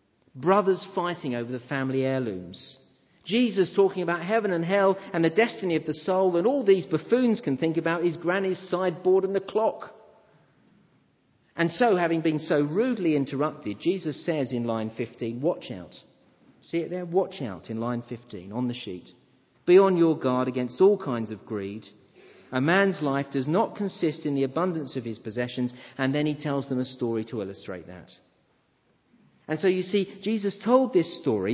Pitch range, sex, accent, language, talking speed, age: 130-185 Hz, male, British, English, 180 wpm, 40-59